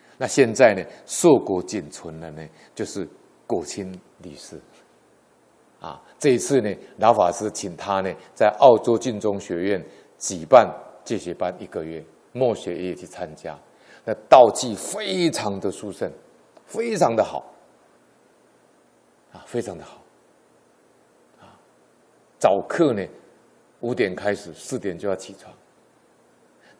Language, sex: Chinese, male